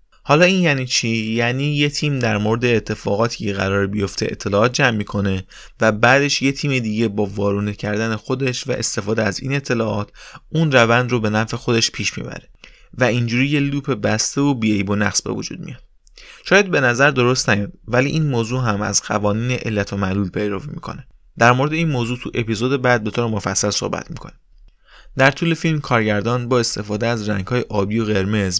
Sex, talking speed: male, 185 wpm